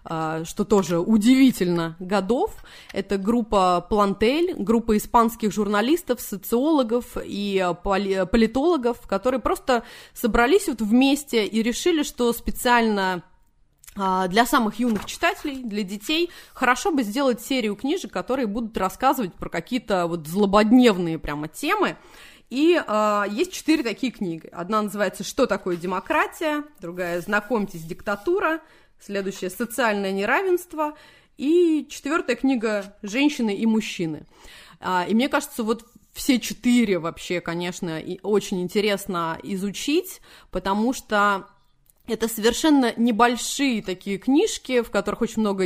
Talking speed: 110 wpm